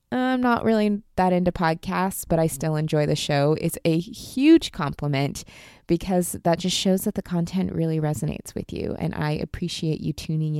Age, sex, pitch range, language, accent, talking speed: 20-39, female, 150-190 Hz, English, American, 180 wpm